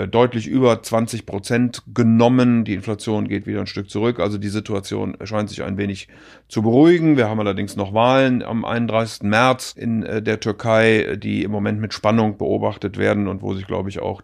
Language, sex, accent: German, male, German